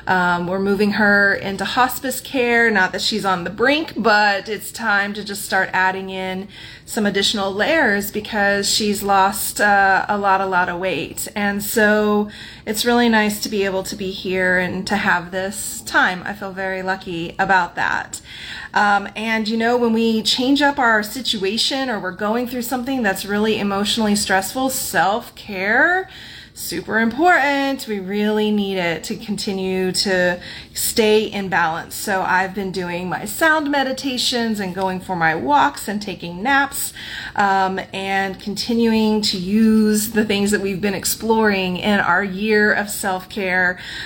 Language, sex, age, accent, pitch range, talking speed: English, female, 30-49, American, 190-225 Hz, 160 wpm